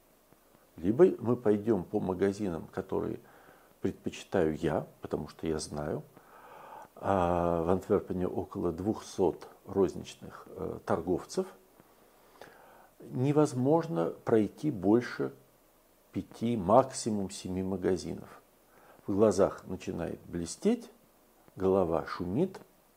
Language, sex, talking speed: Russian, male, 80 wpm